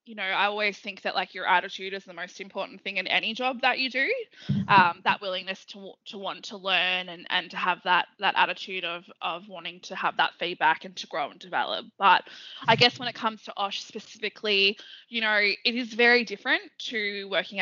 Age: 20-39